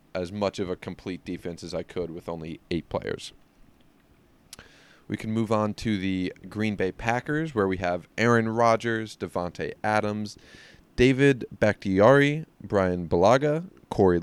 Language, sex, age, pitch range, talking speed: English, male, 20-39, 90-110 Hz, 145 wpm